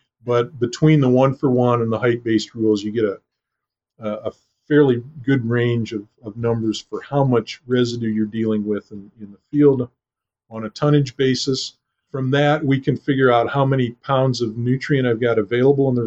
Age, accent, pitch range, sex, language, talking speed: 50-69, American, 110-130 Hz, male, English, 185 wpm